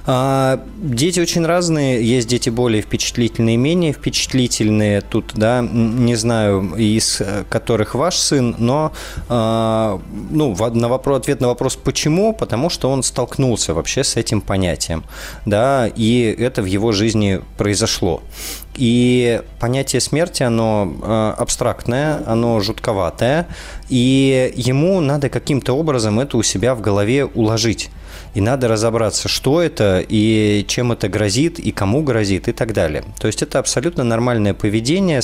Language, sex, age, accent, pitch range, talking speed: Russian, male, 20-39, native, 100-130 Hz, 130 wpm